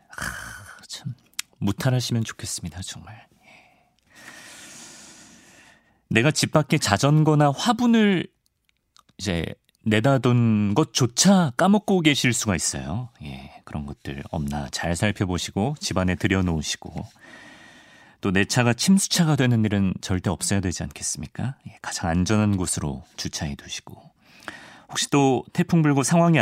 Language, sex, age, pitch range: Korean, male, 40-59, 90-140 Hz